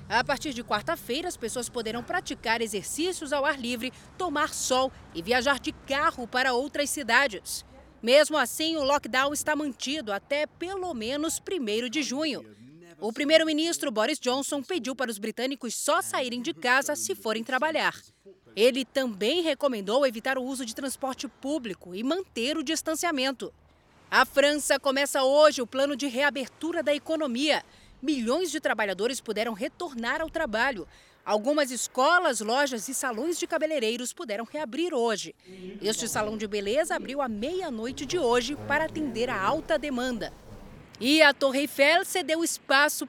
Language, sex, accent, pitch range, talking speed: Portuguese, female, Brazilian, 245-310 Hz, 150 wpm